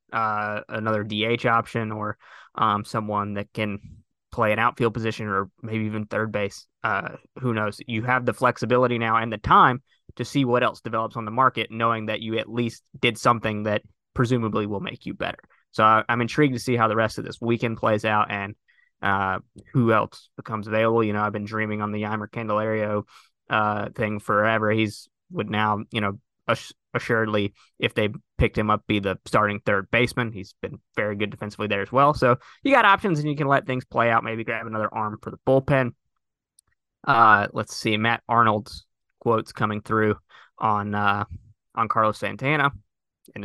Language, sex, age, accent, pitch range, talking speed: English, male, 20-39, American, 105-120 Hz, 190 wpm